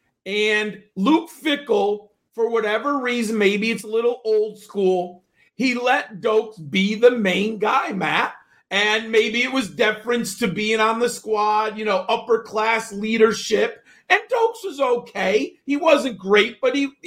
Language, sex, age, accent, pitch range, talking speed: English, male, 40-59, American, 205-260 Hz, 155 wpm